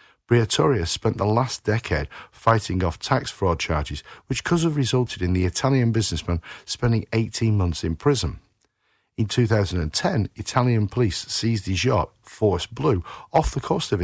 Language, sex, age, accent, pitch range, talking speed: English, male, 50-69, British, 95-135 Hz, 155 wpm